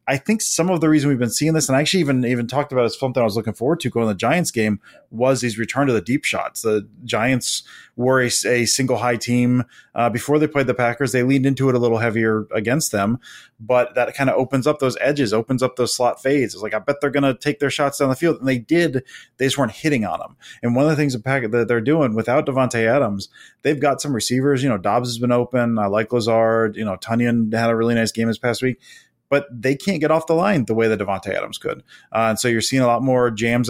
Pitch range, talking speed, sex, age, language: 115-140 Hz, 275 wpm, male, 20-39, English